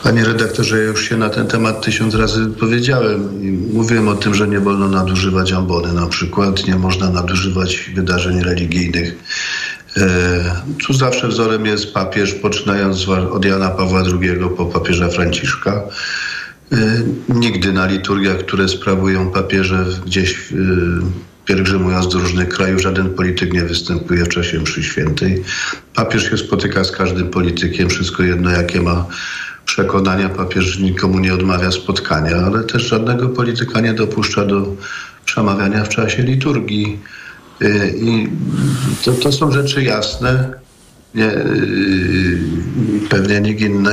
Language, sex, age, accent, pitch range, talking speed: Polish, male, 40-59, native, 90-110 Hz, 125 wpm